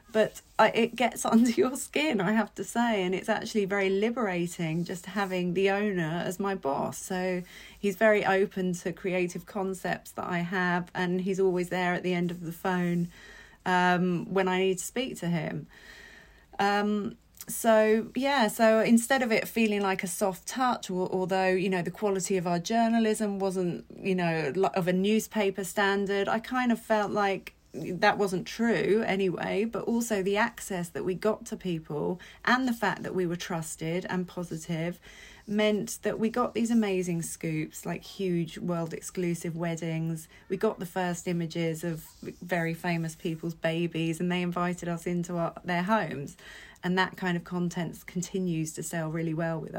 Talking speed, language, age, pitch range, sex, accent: 175 wpm, English, 30-49, 175-205 Hz, female, British